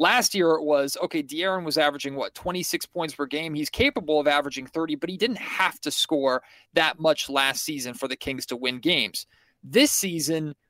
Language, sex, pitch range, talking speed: English, male, 145-190 Hz, 210 wpm